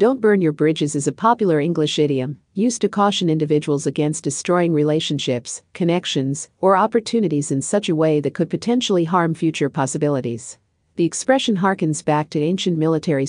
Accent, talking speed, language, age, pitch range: American, 165 wpm, English, 50-69, 145-185 Hz